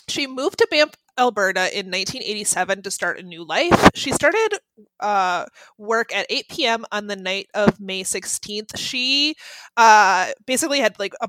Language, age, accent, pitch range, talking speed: English, 20-39, American, 195-260 Hz, 165 wpm